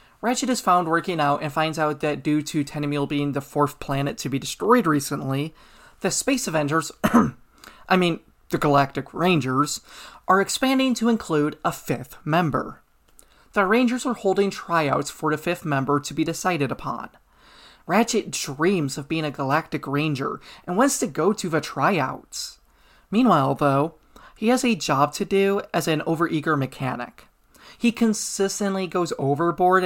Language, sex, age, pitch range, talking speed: English, male, 20-39, 145-195 Hz, 155 wpm